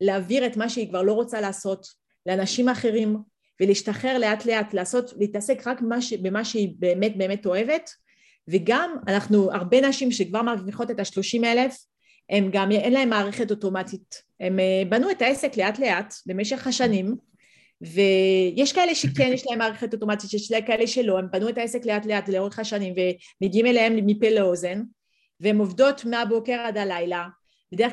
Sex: female